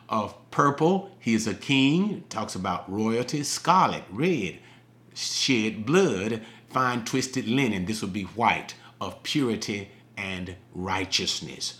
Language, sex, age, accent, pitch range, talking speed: English, male, 40-59, American, 110-140 Hz, 120 wpm